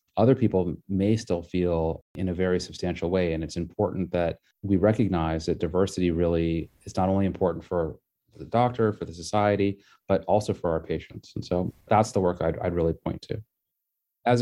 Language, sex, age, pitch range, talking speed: English, male, 30-49, 85-100 Hz, 185 wpm